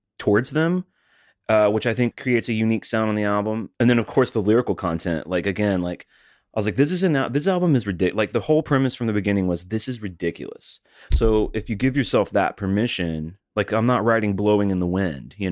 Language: English